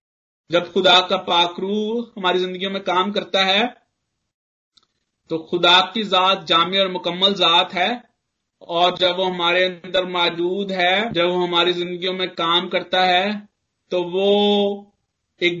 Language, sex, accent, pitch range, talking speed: English, male, Indian, 180-205 Hz, 140 wpm